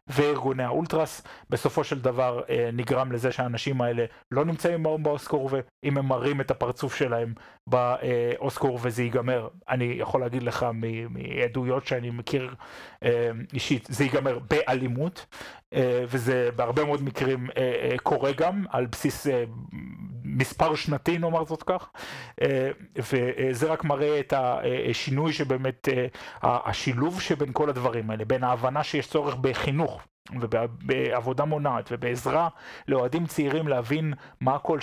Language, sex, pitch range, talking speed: Hebrew, male, 125-150 Hz, 120 wpm